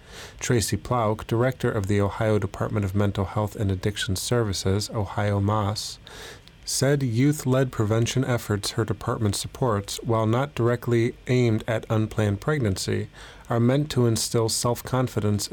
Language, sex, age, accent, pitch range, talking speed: English, male, 30-49, American, 105-120 Hz, 130 wpm